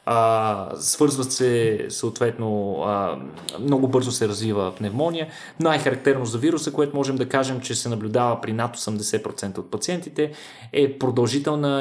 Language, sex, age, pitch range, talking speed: Bulgarian, male, 20-39, 110-140 Hz, 135 wpm